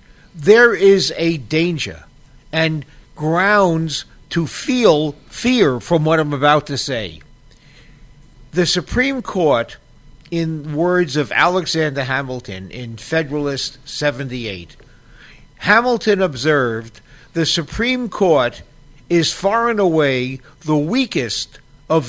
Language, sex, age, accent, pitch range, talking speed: English, male, 50-69, American, 145-190 Hz, 105 wpm